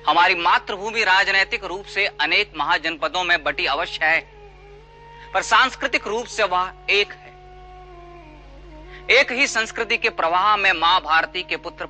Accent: native